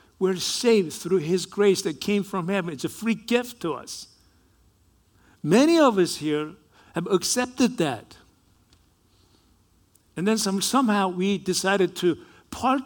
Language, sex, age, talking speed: English, male, 60-79, 135 wpm